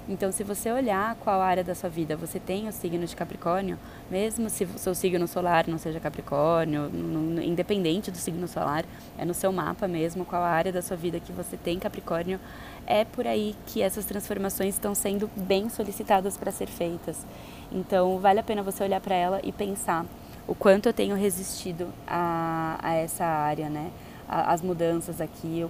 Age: 20-39